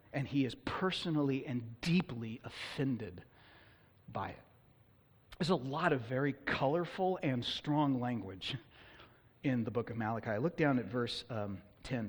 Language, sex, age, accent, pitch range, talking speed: English, male, 40-59, American, 120-185 Hz, 145 wpm